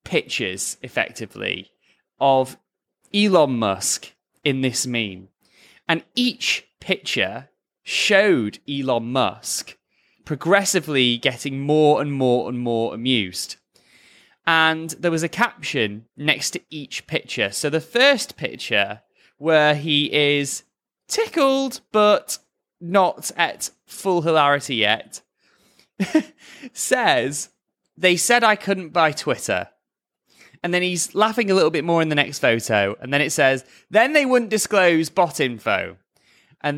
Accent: British